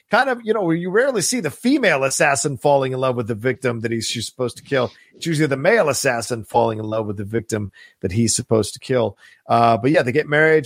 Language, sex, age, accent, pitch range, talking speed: English, male, 40-59, American, 110-140 Hz, 250 wpm